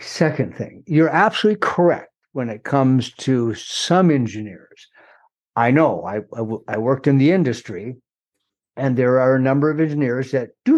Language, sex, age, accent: English, male, 60-79, American